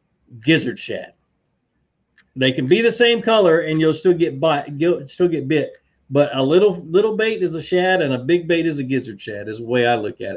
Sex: male